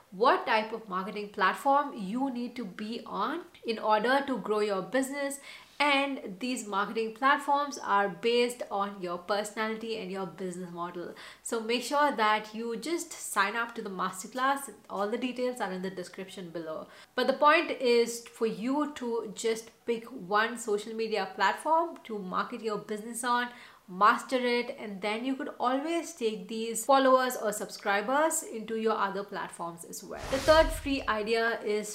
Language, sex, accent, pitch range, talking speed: English, female, Indian, 200-245 Hz, 165 wpm